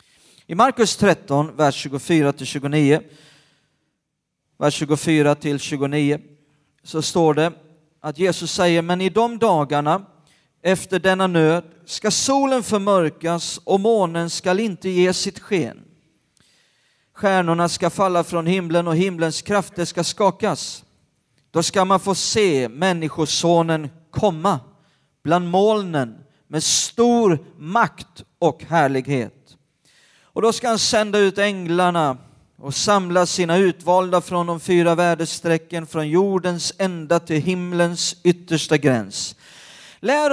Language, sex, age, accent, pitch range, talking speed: Swedish, male, 40-59, native, 155-195 Hz, 120 wpm